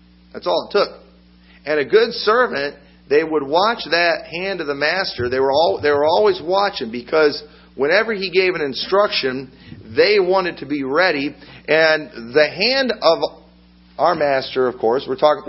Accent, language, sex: American, English, male